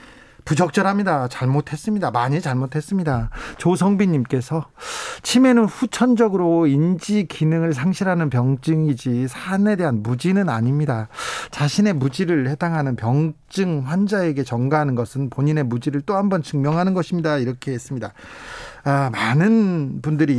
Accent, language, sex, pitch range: native, Korean, male, 135-200 Hz